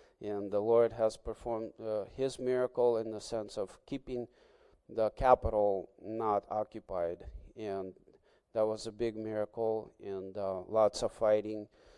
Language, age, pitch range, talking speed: English, 30-49, 105-120 Hz, 140 wpm